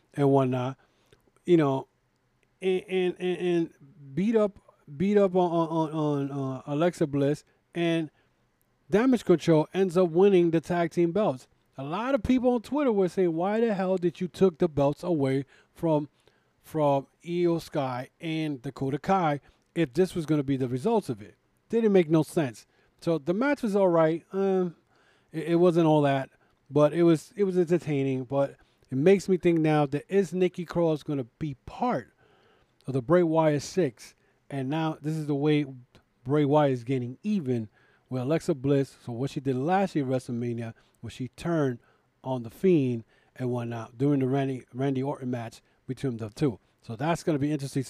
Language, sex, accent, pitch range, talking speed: English, male, American, 135-180 Hz, 185 wpm